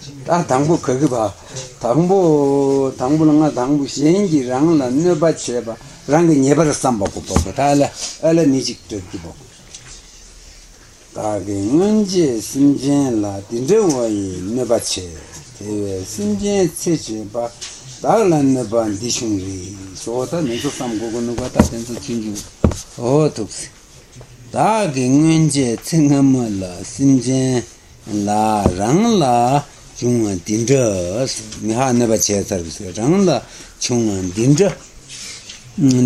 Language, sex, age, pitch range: Italian, male, 60-79, 100-140 Hz